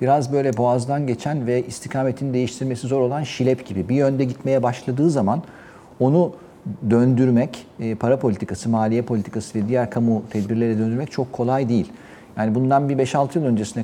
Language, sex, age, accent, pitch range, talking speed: Turkish, male, 50-69, native, 115-150 Hz, 155 wpm